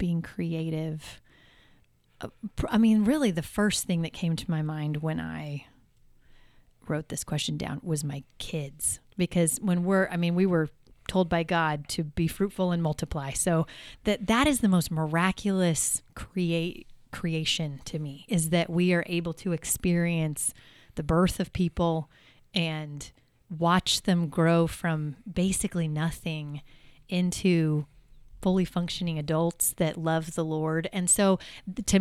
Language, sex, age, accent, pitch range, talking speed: English, female, 30-49, American, 155-185 Hz, 145 wpm